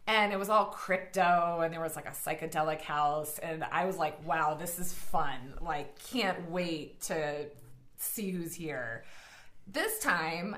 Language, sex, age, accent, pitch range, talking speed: English, female, 30-49, American, 155-200 Hz, 165 wpm